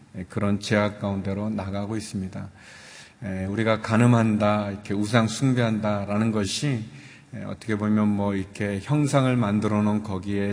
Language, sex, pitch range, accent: Korean, male, 100-120 Hz, native